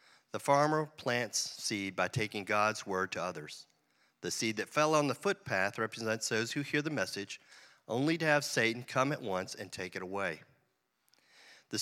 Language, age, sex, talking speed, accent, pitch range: English, 40-59, male, 180 wpm, American, 100-140 Hz